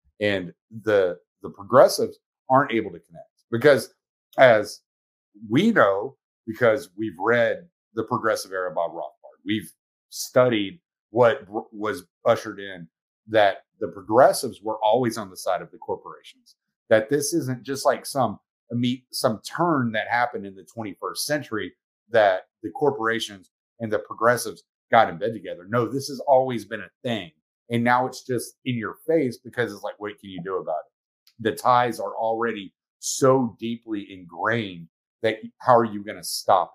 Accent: American